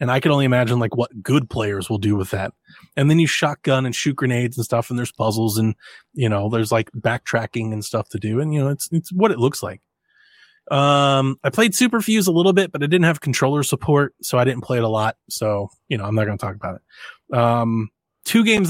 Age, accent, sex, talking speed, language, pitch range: 20-39, American, male, 250 wpm, English, 115-150 Hz